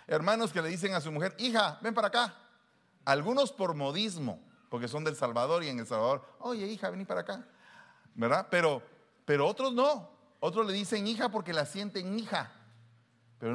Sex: male